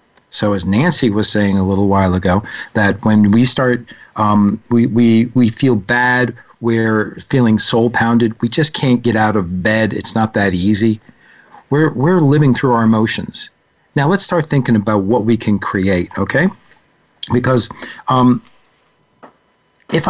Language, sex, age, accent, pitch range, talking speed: English, male, 40-59, American, 110-130 Hz, 155 wpm